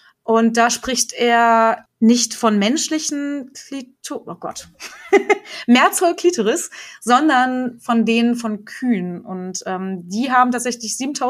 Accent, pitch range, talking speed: German, 205-245 Hz, 110 wpm